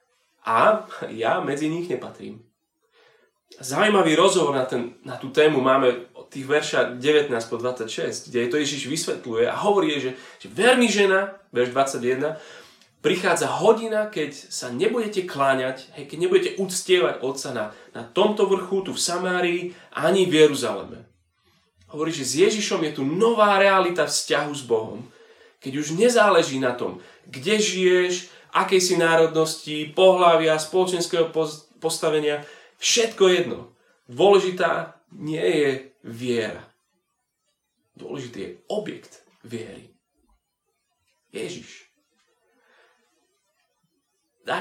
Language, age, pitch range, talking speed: Slovak, 30-49, 140-195 Hz, 120 wpm